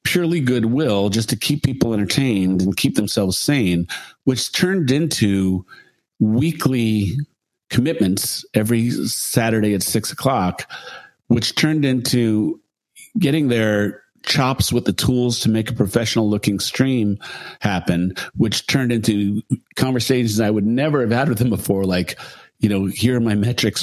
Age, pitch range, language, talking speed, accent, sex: 50-69, 100-125 Hz, English, 140 wpm, American, male